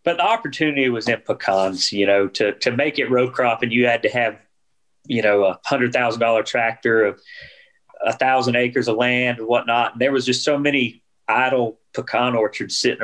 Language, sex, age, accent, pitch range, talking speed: English, male, 30-49, American, 105-140 Hz, 200 wpm